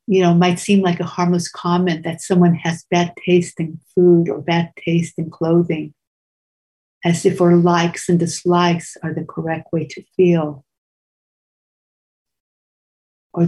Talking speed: 145 wpm